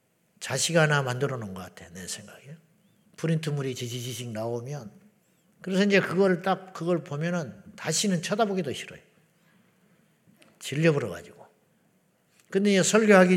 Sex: male